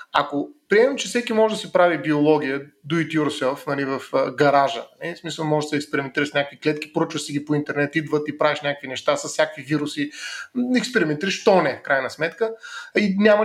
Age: 30-49